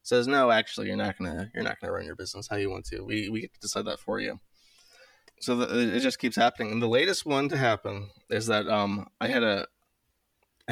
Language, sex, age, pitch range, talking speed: English, male, 20-39, 105-120 Hz, 225 wpm